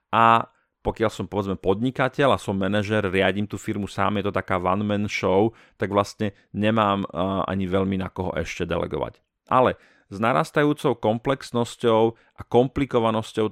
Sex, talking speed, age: male, 140 wpm, 40-59